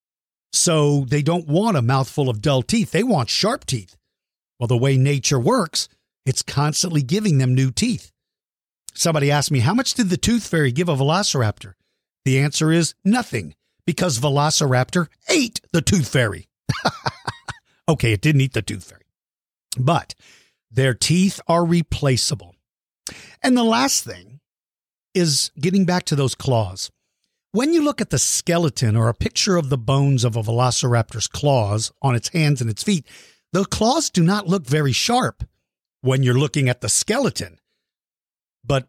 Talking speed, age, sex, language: 160 wpm, 50-69, male, English